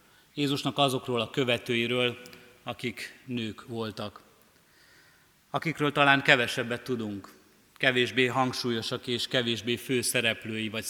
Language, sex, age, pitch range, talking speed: Hungarian, male, 30-49, 115-135 Hz, 95 wpm